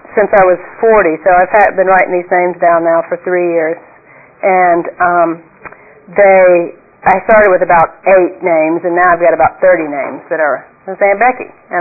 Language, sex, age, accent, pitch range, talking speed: English, female, 40-59, American, 170-215 Hz, 190 wpm